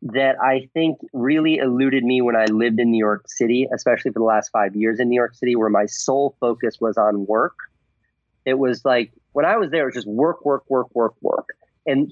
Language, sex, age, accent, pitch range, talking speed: English, male, 30-49, American, 130-175 Hz, 230 wpm